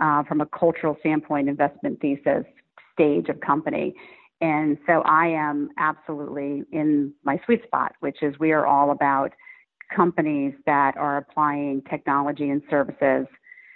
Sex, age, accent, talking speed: female, 40-59, American, 140 wpm